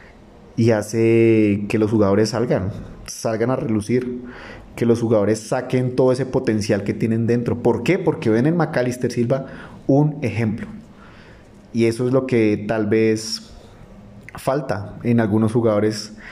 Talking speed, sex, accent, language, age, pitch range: 145 wpm, male, Colombian, Spanish, 30-49, 105-120 Hz